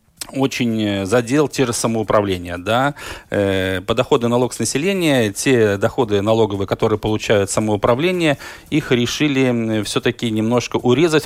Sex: male